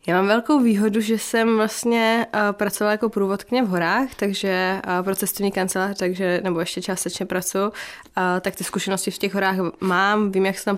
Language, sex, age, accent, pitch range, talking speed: Czech, female, 20-39, native, 185-200 Hz, 195 wpm